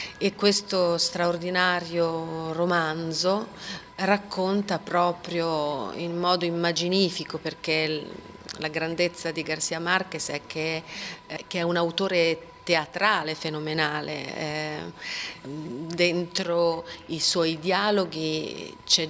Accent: native